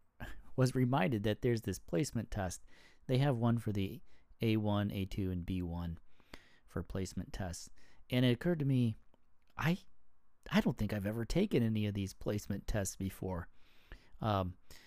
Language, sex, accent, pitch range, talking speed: English, male, American, 90-110 Hz, 155 wpm